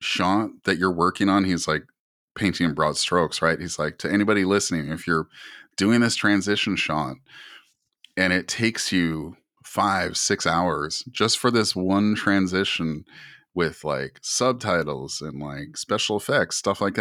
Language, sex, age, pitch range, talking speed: English, male, 30-49, 85-105 Hz, 155 wpm